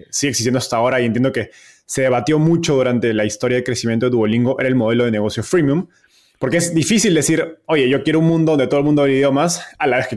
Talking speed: 250 wpm